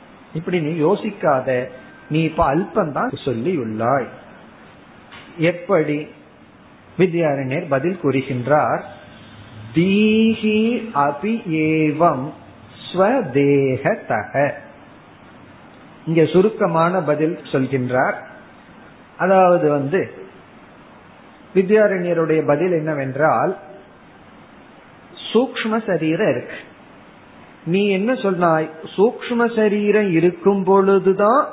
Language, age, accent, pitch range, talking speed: Tamil, 50-69, native, 155-215 Hz, 55 wpm